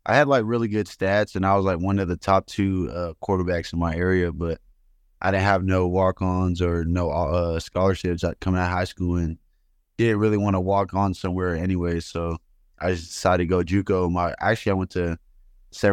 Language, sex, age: English, male, 20-39